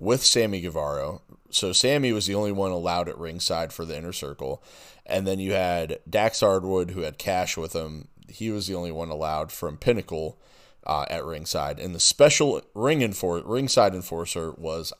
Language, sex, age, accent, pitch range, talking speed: English, male, 30-49, American, 90-115 Hz, 185 wpm